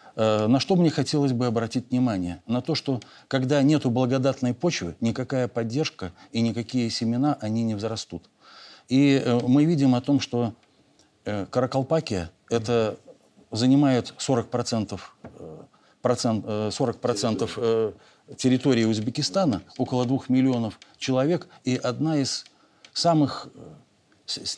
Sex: male